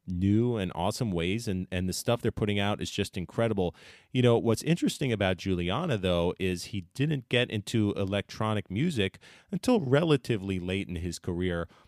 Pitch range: 85-100 Hz